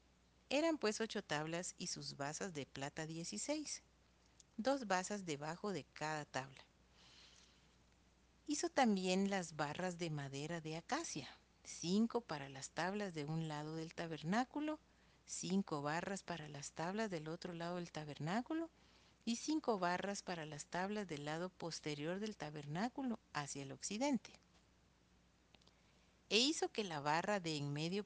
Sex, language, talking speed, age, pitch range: female, Spanish, 140 wpm, 50-69, 150-220 Hz